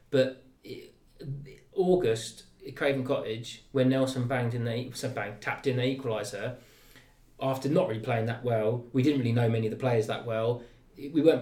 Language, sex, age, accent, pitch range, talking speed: English, male, 20-39, British, 120-135 Hz, 175 wpm